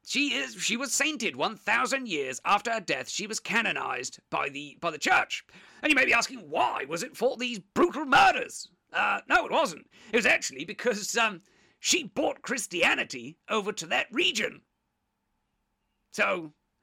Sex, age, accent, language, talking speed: male, 40-59, British, English, 170 wpm